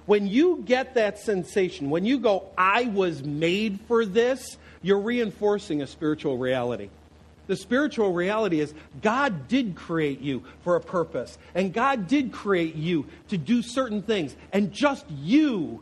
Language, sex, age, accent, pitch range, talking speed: English, male, 50-69, American, 170-225 Hz, 155 wpm